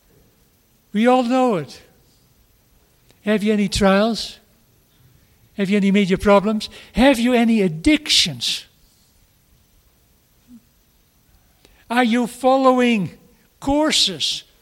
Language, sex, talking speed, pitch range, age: English, male, 85 wpm, 190-245 Hz, 60-79